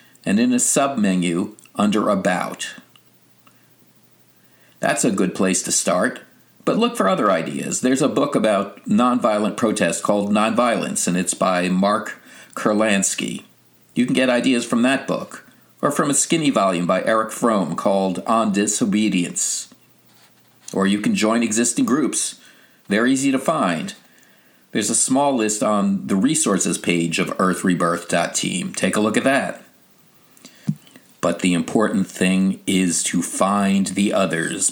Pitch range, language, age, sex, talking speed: 95-130 Hz, English, 50-69, male, 140 wpm